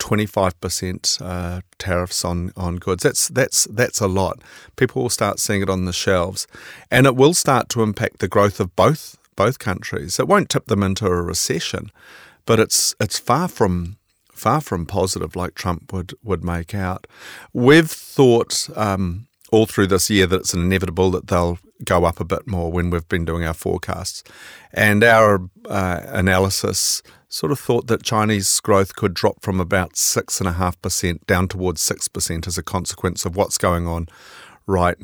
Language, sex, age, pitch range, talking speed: English, male, 40-59, 90-110 Hz, 175 wpm